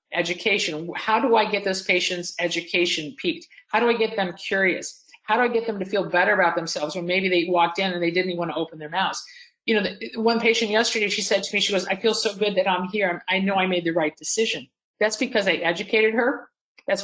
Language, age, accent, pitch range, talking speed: English, 50-69, American, 180-225 Hz, 245 wpm